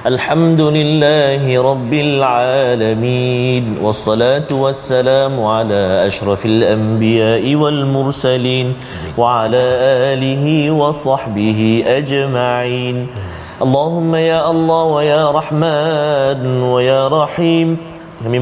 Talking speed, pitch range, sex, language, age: 85 wpm, 125-155 Hz, male, Malayalam, 30-49